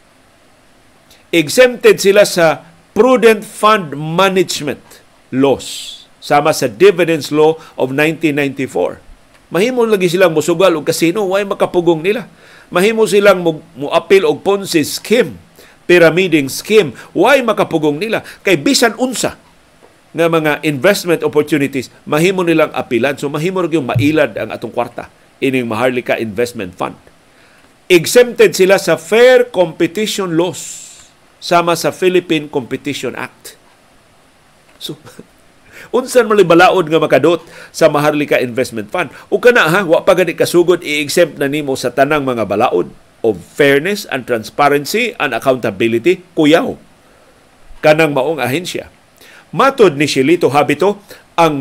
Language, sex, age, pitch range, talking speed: Filipino, male, 50-69, 145-200 Hz, 120 wpm